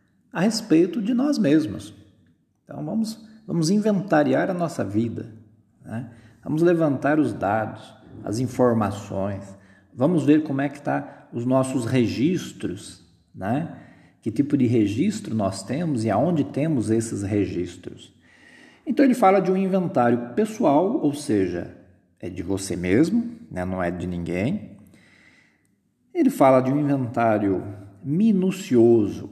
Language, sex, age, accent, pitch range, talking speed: Portuguese, male, 50-69, Brazilian, 100-140 Hz, 130 wpm